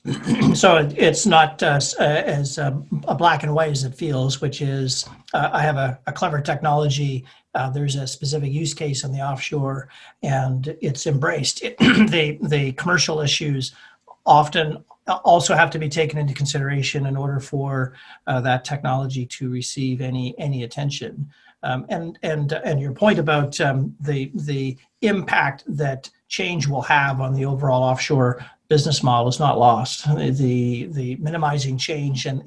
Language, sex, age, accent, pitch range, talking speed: English, male, 40-59, American, 130-160 Hz, 165 wpm